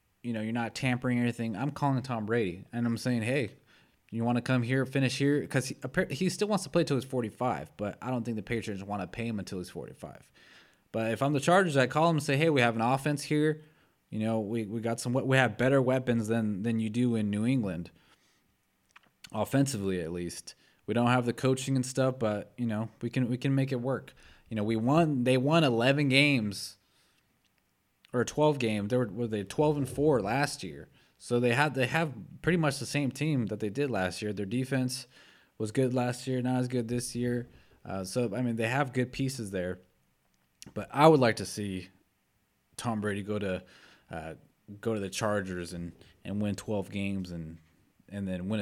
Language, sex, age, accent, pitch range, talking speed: English, male, 20-39, American, 105-135 Hz, 220 wpm